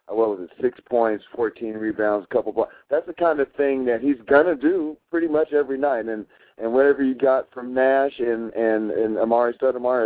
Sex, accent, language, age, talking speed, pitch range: male, American, English, 40-59, 215 wpm, 110-135 Hz